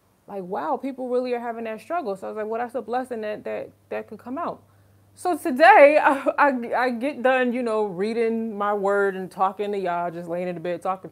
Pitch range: 175-230 Hz